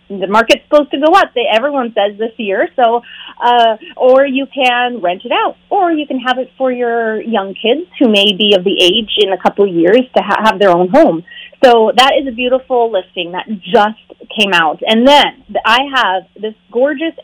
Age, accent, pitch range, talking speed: 30-49, American, 205-270 Hz, 200 wpm